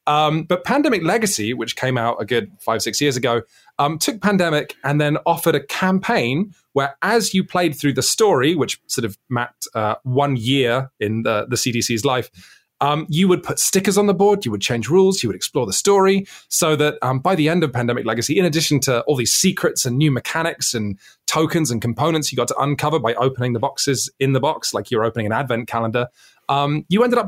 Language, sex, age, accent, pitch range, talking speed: English, male, 30-49, British, 125-165 Hz, 220 wpm